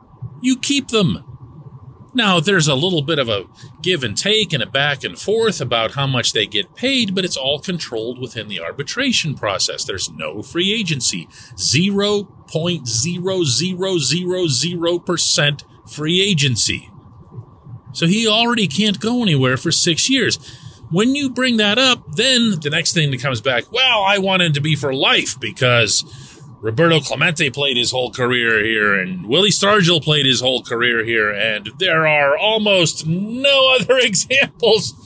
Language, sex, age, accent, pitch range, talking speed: English, male, 40-59, American, 130-200 Hz, 155 wpm